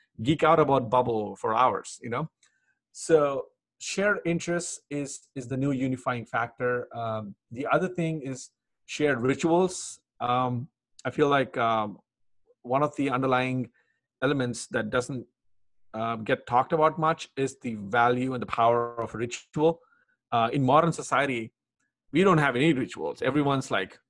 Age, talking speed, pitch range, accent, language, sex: 30-49, 150 wpm, 115-150 Hz, Indian, English, male